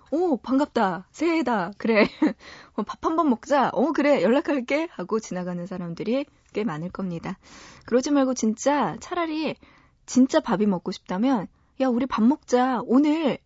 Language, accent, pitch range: Korean, native, 185-260 Hz